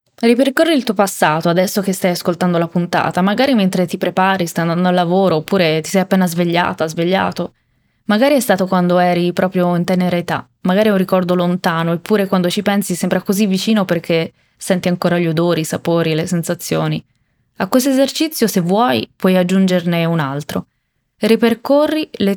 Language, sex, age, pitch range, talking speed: Italian, female, 20-39, 175-210 Hz, 175 wpm